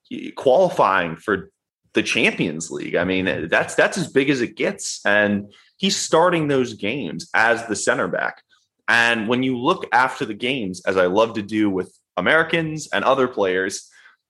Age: 20-39